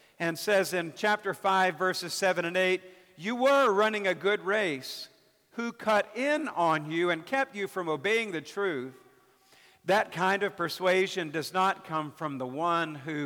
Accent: American